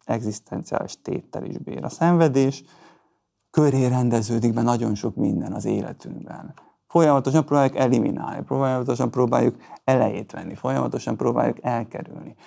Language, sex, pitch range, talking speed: Hungarian, male, 120-150 Hz, 115 wpm